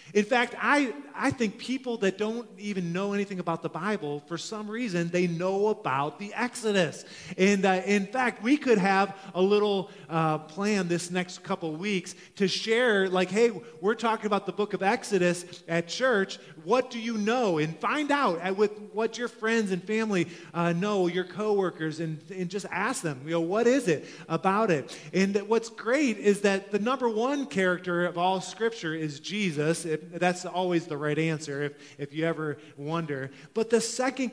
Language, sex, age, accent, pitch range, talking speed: English, male, 30-49, American, 155-210 Hz, 185 wpm